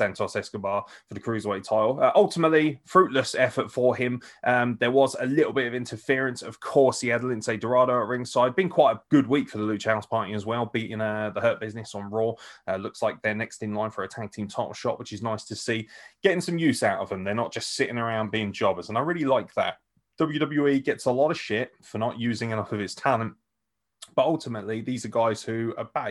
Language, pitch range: English, 110-135 Hz